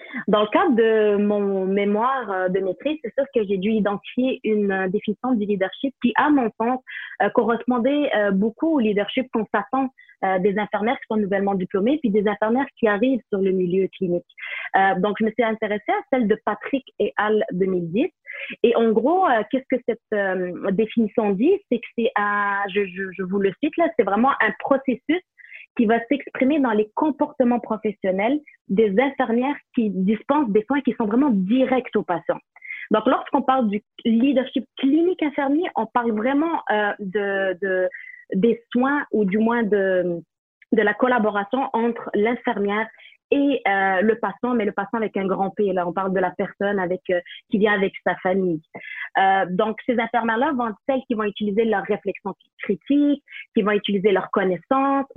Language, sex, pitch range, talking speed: English, female, 200-265 Hz, 175 wpm